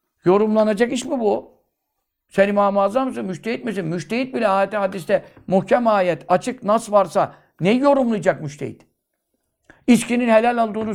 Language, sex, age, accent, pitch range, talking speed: Turkish, male, 60-79, native, 195-240 Hz, 130 wpm